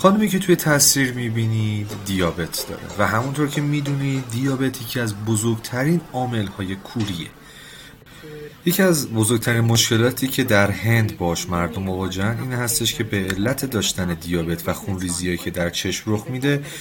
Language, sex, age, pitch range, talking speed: Persian, male, 30-49, 95-135 Hz, 150 wpm